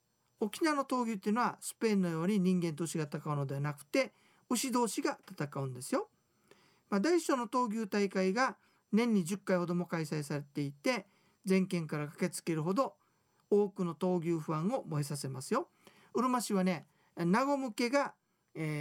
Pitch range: 170-235 Hz